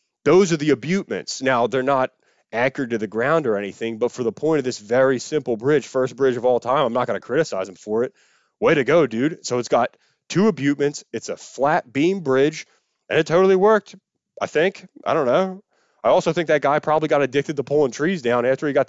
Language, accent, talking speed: English, American, 230 wpm